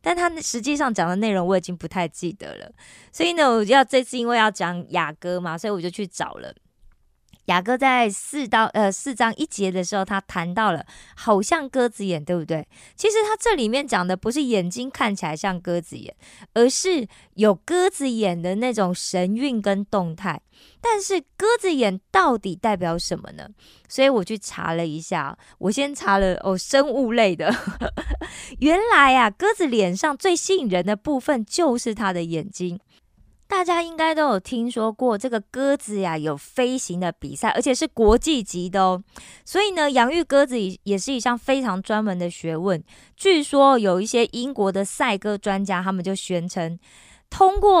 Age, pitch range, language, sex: 20-39, 185-265 Hz, Korean, female